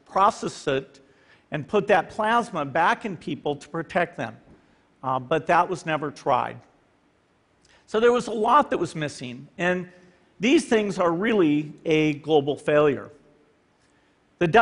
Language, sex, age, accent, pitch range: Chinese, male, 50-69, American, 150-205 Hz